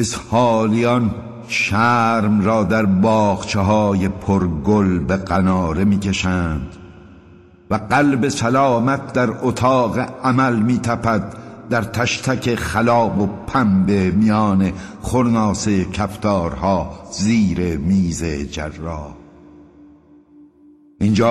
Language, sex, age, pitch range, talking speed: Persian, male, 60-79, 90-115 Hz, 85 wpm